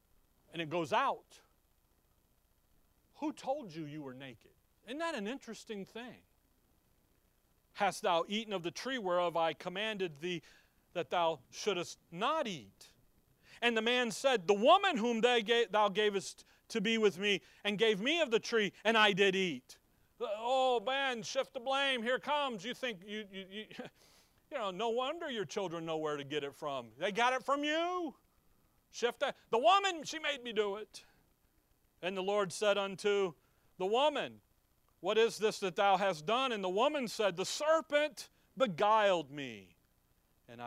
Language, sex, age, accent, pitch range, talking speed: English, male, 40-59, American, 160-240 Hz, 170 wpm